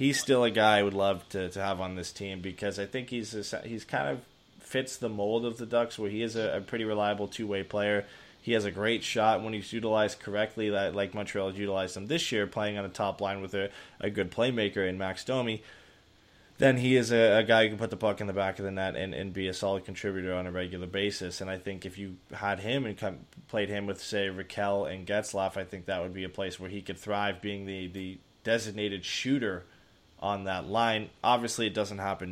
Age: 20-39